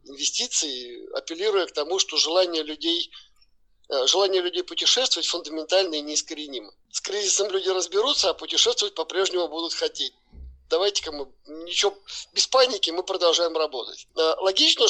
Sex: male